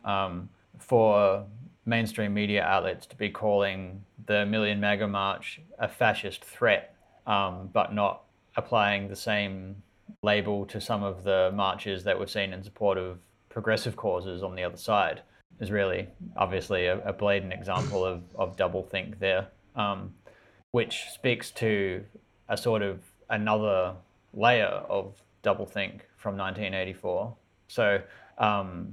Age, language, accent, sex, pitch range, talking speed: 20-39, English, Australian, male, 95-110 Hz, 130 wpm